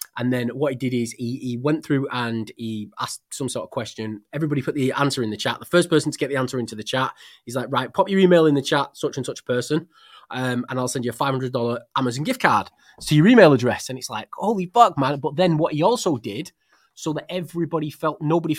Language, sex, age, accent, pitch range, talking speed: English, male, 20-39, British, 125-155 Hz, 250 wpm